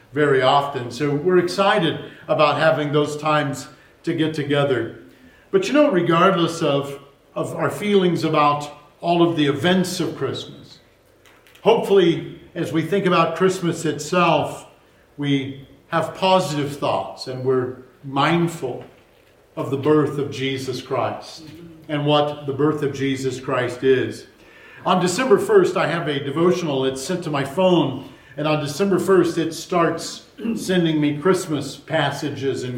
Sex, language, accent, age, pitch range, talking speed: male, English, American, 50-69, 145-175 Hz, 145 wpm